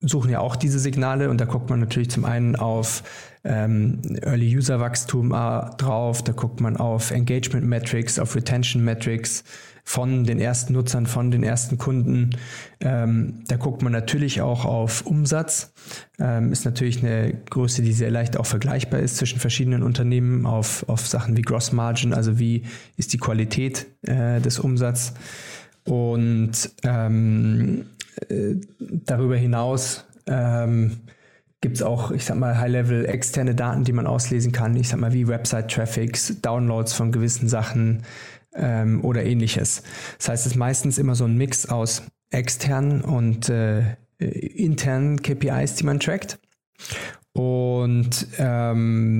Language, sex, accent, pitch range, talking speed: German, male, German, 115-130 Hz, 140 wpm